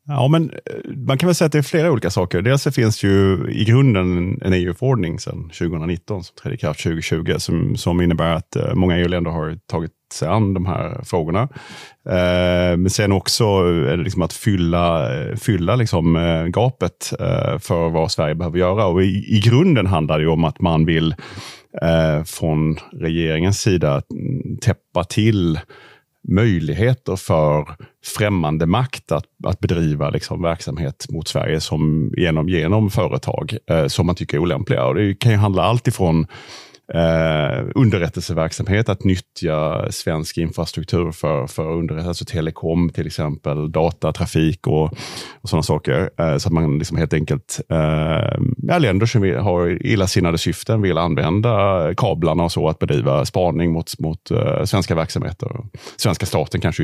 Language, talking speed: Swedish, 155 wpm